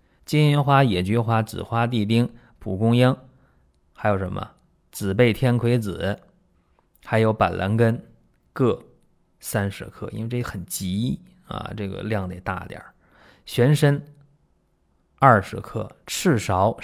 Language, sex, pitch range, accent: Chinese, male, 95-125 Hz, native